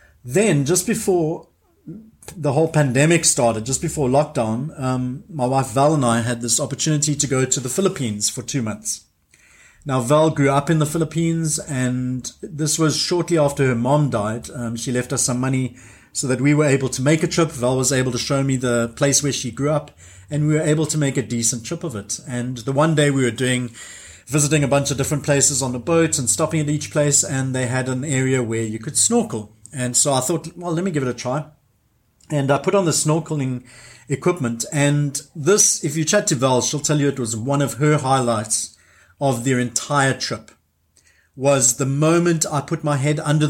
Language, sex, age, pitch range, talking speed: English, male, 30-49, 120-155 Hz, 215 wpm